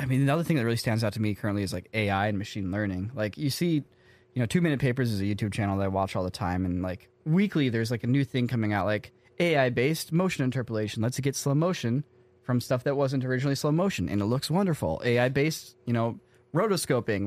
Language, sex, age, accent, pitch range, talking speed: English, male, 20-39, American, 115-150 Hz, 245 wpm